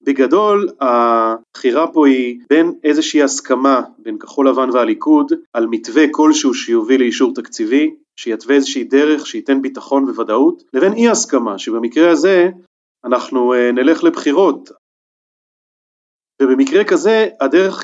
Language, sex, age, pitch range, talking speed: Hebrew, male, 30-49, 120-170 Hz, 115 wpm